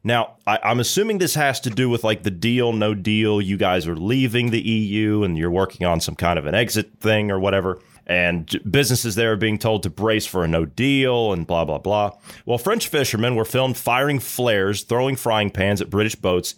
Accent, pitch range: American, 100-125 Hz